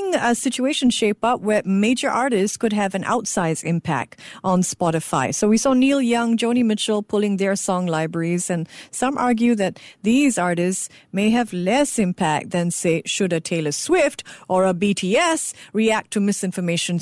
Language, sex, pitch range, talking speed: English, female, 180-245 Hz, 165 wpm